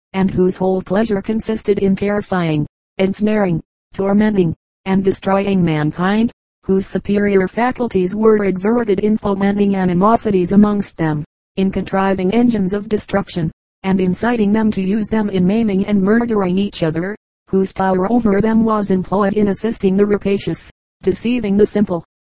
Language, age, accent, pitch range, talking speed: English, 50-69, American, 185-210 Hz, 140 wpm